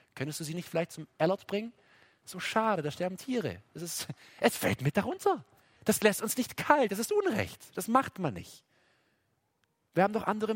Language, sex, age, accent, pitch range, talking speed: German, male, 40-59, German, 130-205 Hz, 200 wpm